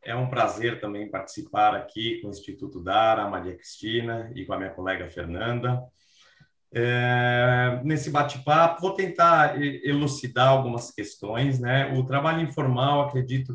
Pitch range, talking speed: 120-150 Hz, 135 wpm